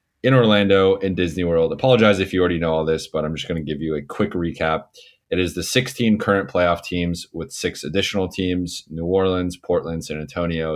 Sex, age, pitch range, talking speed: male, 20-39, 80-95 Hz, 210 wpm